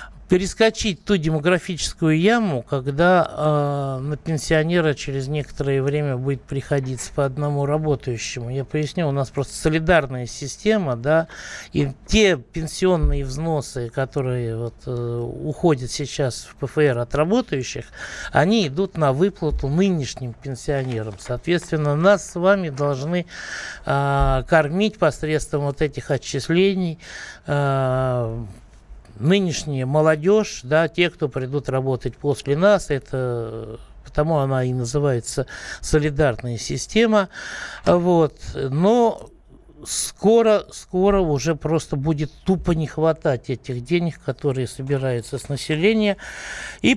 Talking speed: 110 wpm